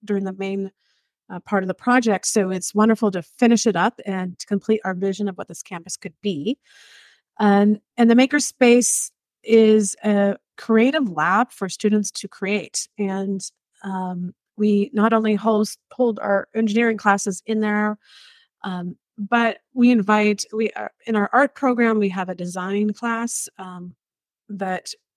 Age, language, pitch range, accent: 30-49, English, 190-225 Hz, American